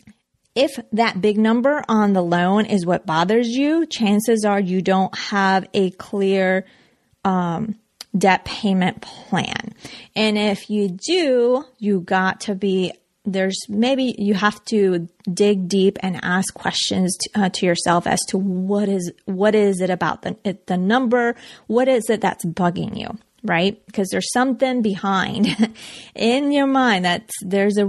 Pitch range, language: 190-230 Hz, English